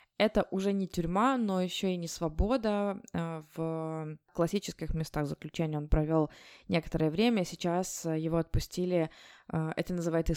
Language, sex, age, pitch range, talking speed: Russian, female, 20-39, 160-190 Hz, 125 wpm